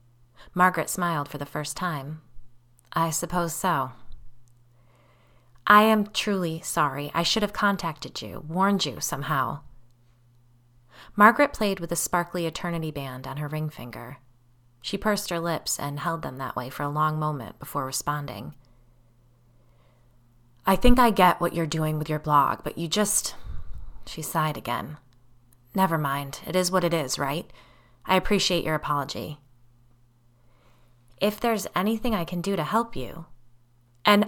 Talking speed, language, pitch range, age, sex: 150 wpm, English, 120-180 Hz, 20-39, female